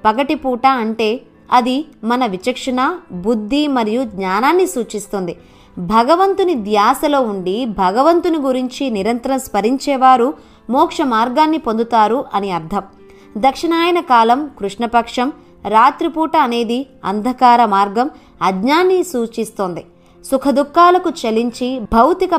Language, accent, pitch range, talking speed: Telugu, native, 220-290 Hz, 90 wpm